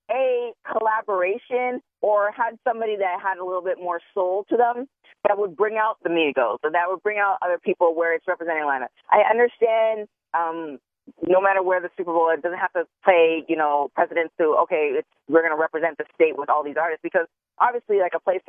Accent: American